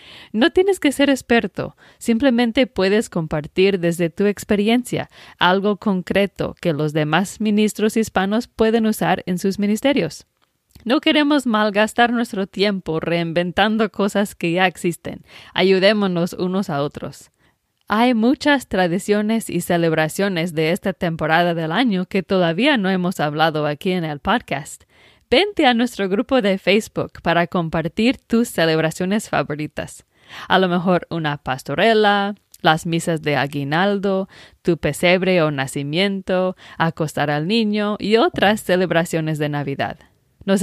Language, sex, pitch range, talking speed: English, female, 165-215 Hz, 130 wpm